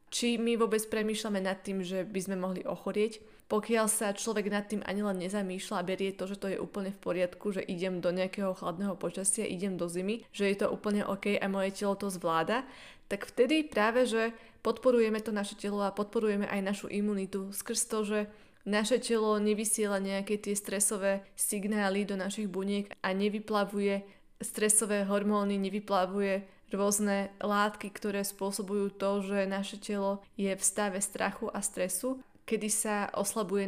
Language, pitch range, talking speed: Slovak, 195-210 Hz, 170 wpm